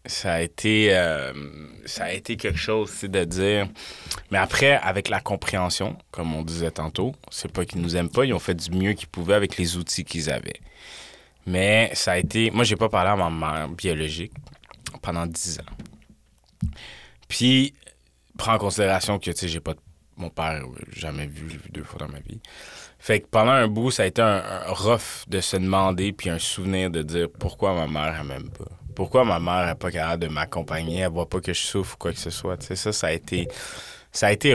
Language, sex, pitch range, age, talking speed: French, male, 85-105 Hz, 20-39, 220 wpm